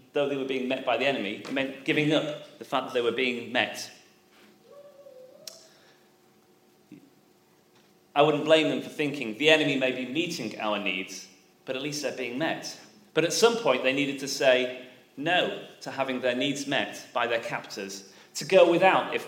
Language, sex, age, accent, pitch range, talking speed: English, male, 30-49, British, 130-160 Hz, 185 wpm